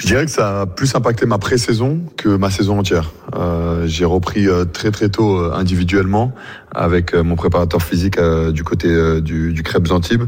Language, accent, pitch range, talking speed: French, French, 85-100 Hz, 205 wpm